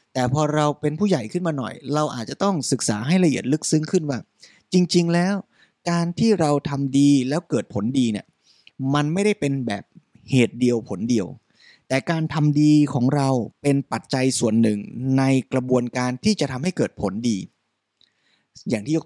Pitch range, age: 135-185 Hz, 20-39